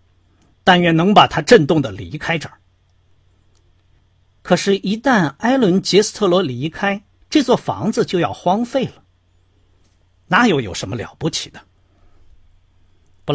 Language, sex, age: Chinese, male, 50-69